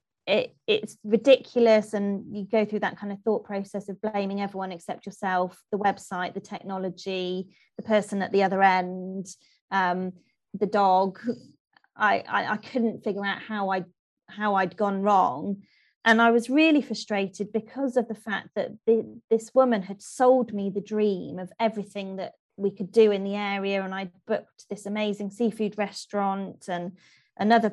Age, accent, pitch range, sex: 20-39, British, 190-225 Hz, female